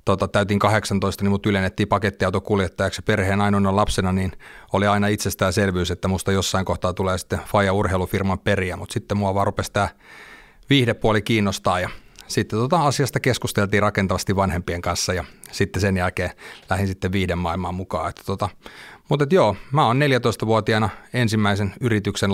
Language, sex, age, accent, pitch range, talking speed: Finnish, male, 30-49, native, 95-120 Hz, 145 wpm